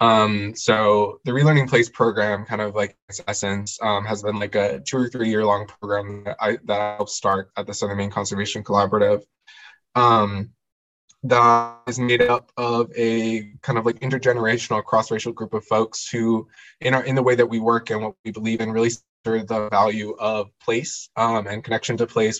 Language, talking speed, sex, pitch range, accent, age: English, 200 wpm, male, 105-120 Hz, American, 20-39